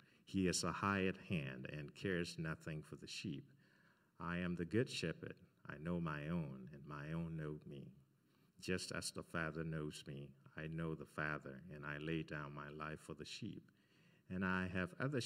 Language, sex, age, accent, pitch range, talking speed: English, male, 50-69, American, 75-95 Hz, 190 wpm